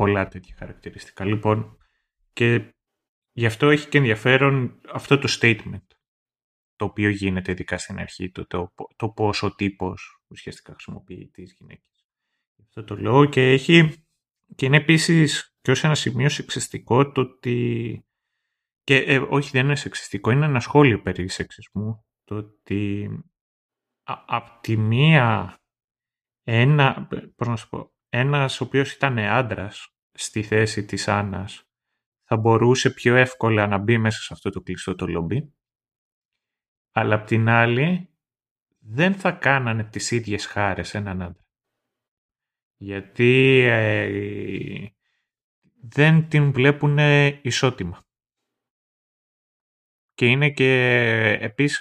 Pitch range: 105-135 Hz